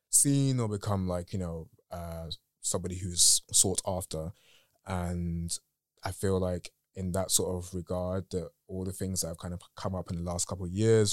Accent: British